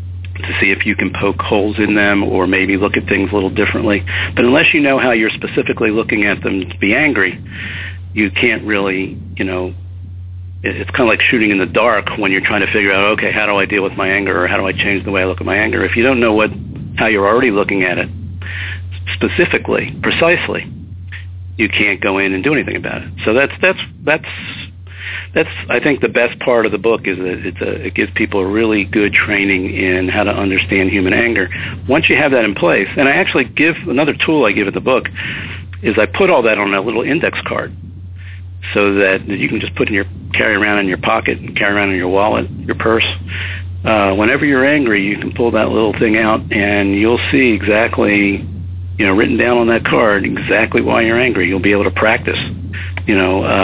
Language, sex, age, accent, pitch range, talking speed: English, male, 50-69, American, 90-105 Hz, 225 wpm